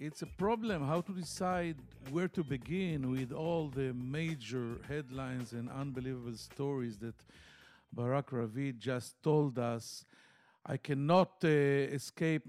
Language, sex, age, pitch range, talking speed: English, male, 50-69, 130-170 Hz, 130 wpm